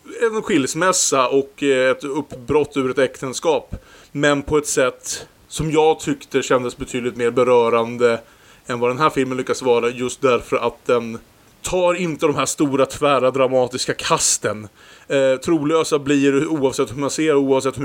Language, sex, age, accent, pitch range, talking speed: Swedish, male, 30-49, Norwegian, 125-145 Hz, 155 wpm